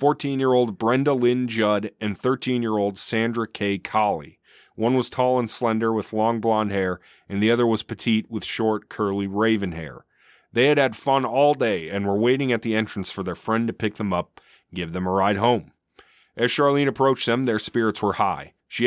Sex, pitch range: male, 100-125 Hz